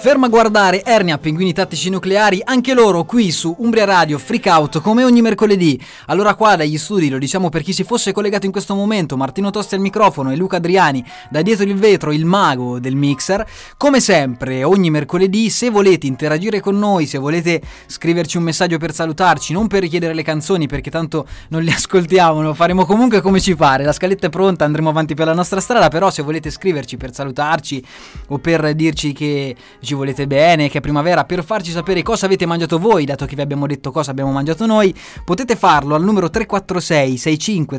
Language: Italian